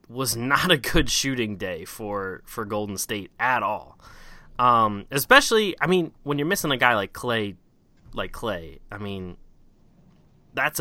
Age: 20-39